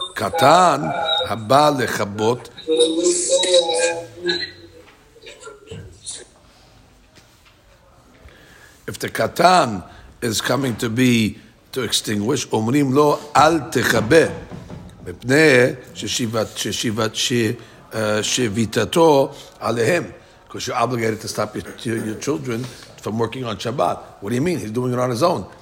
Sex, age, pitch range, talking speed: male, 60-79, 110-140 Hz, 80 wpm